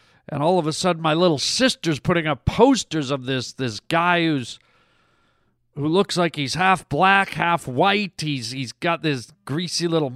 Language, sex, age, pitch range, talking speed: English, male, 40-59, 140-190 Hz, 175 wpm